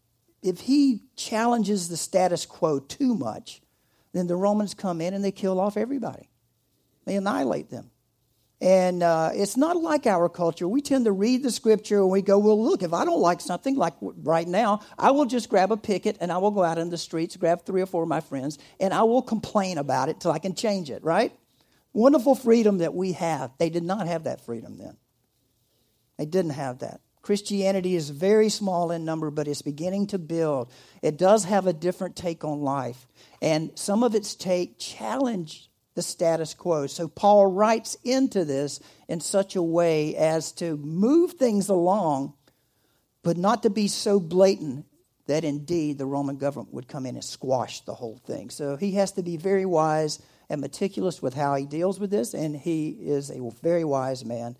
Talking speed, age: 195 wpm, 50-69